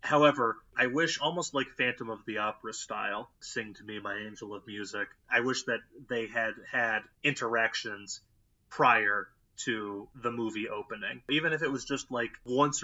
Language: English